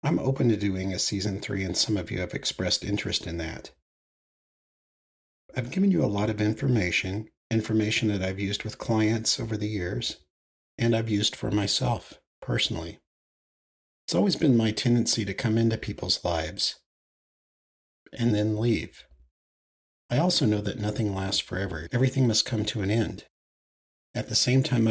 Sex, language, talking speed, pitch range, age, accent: male, English, 165 wpm, 85-115 Hz, 40-59, American